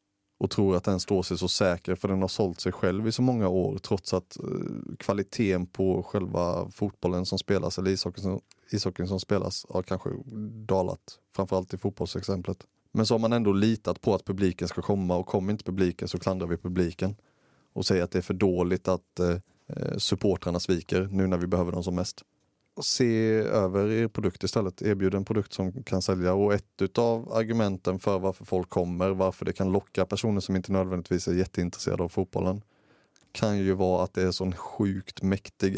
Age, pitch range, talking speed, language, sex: 30-49, 90-100 Hz, 190 wpm, Swedish, male